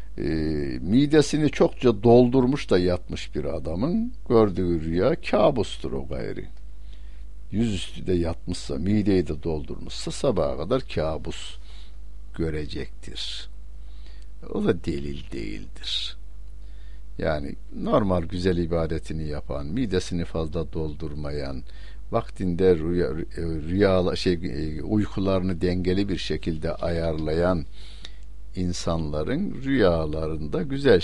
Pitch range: 80-100 Hz